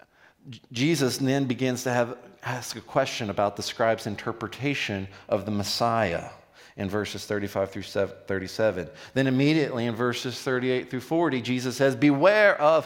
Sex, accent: male, American